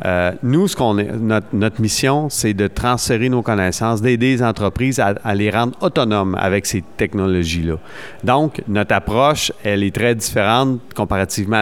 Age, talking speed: 40-59, 165 wpm